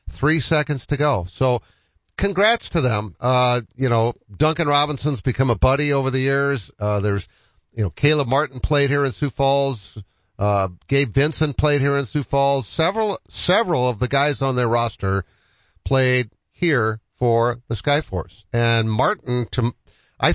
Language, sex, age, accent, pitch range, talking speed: English, male, 50-69, American, 110-145 Hz, 160 wpm